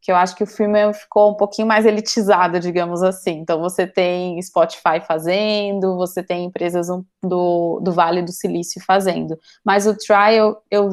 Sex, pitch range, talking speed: female, 190-230 Hz, 175 wpm